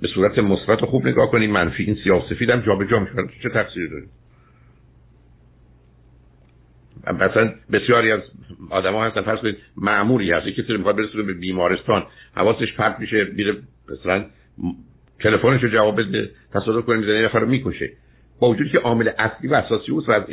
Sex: male